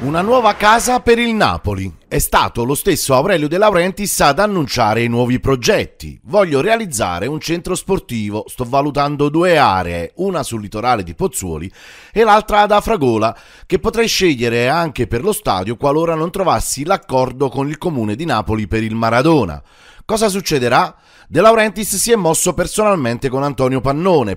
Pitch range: 120-180 Hz